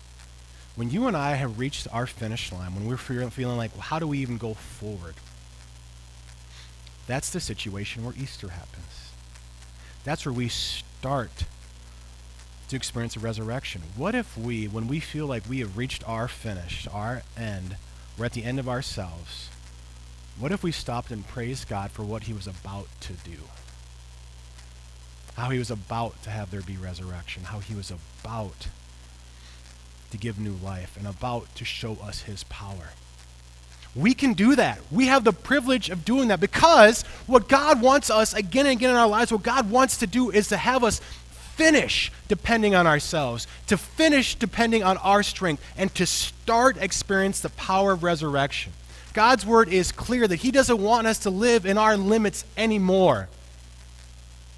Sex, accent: male, American